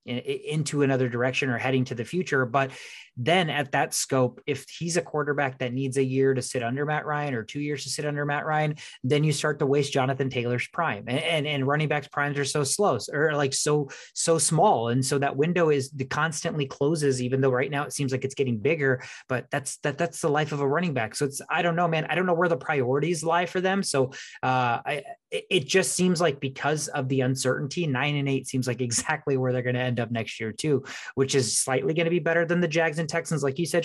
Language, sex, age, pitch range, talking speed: English, male, 20-39, 130-155 Hz, 250 wpm